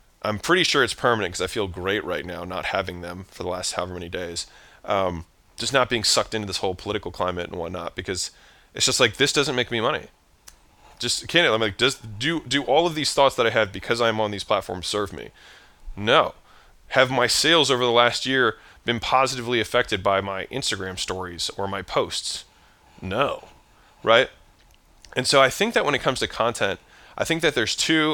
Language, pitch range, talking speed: English, 105-150 Hz, 205 wpm